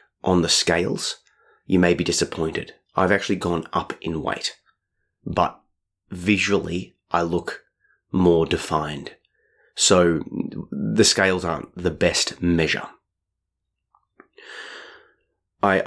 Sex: male